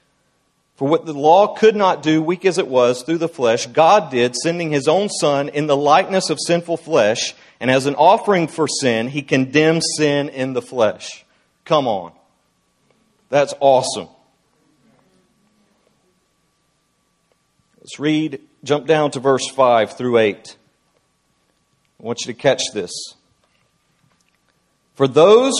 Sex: male